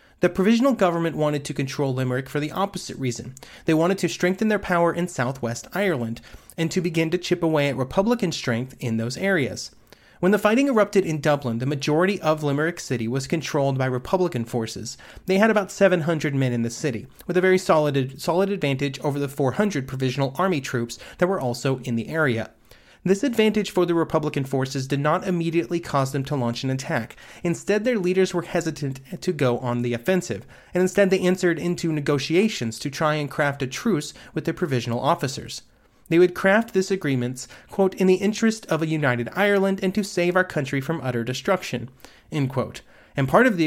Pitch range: 130-180 Hz